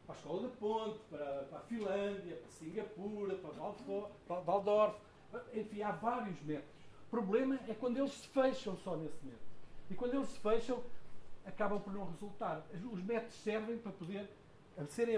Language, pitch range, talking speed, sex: Portuguese, 160-210 Hz, 175 wpm, male